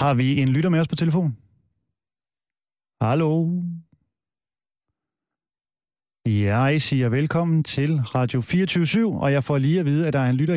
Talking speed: 155 wpm